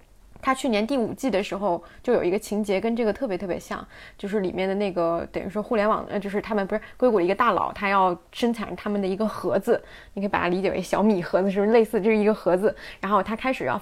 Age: 20-39